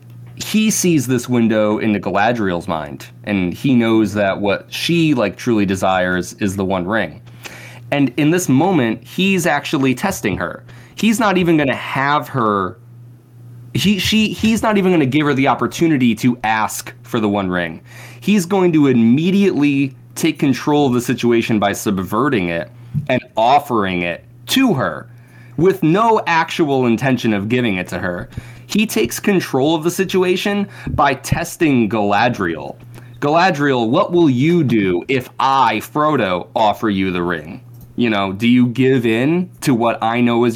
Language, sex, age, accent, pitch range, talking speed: English, male, 20-39, American, 110-150 Hz, 165 wpm